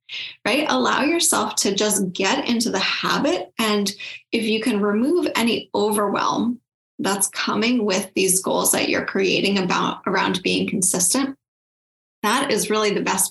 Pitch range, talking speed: 205-250 Hz, 150 wpm